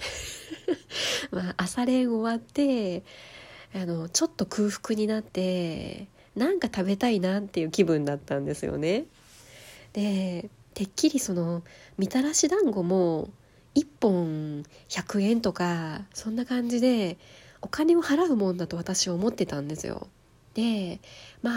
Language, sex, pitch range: Japanese, female, 180-235 Hz